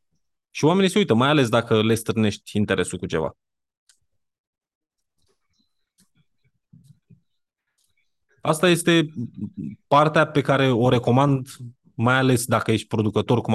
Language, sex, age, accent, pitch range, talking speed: Romanian, male, 20-39, native, 110-150 Hz, 110 wpm